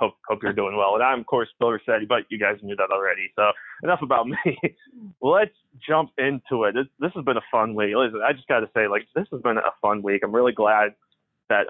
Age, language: 20-39, English